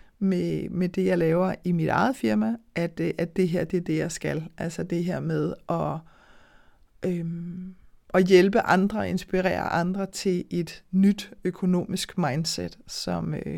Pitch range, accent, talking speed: 170-195 Hz, native, 150 wpm